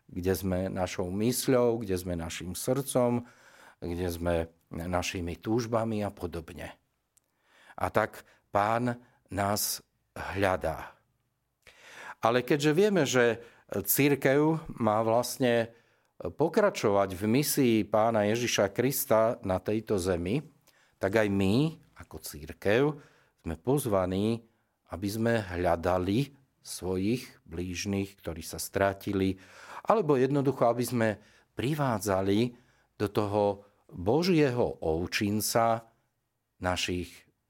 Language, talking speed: Slovak, 95 wpm